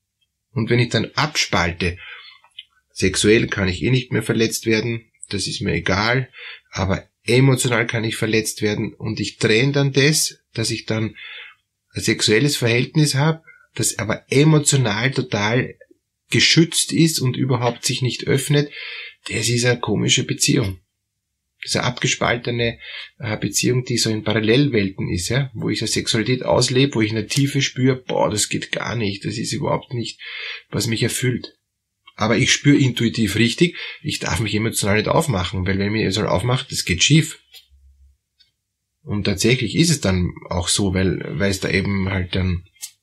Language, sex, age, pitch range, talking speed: German, male, 20-39, 100-130 Hz, 160 wpm